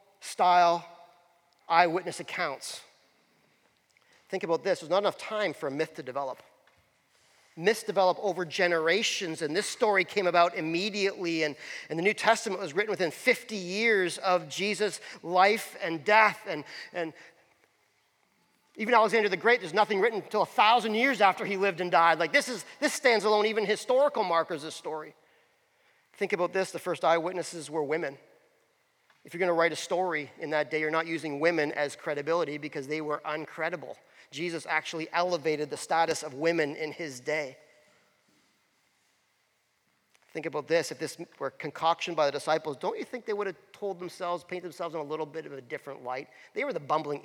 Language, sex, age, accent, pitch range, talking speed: English, male, 40-59, American, 160-210 Hz, 175 wpm